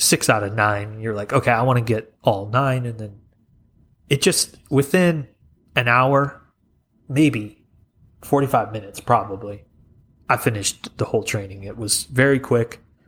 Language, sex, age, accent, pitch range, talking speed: English, male, 30-49, American, 105-130 Hz, 150 wpm